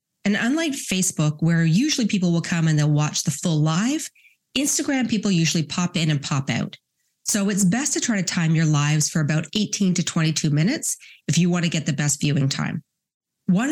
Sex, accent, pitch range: female, American, 155-200 Hz